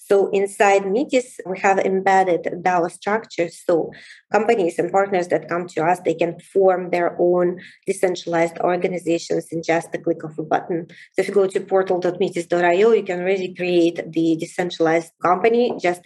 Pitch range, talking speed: 170-195 Hz, 165 wpm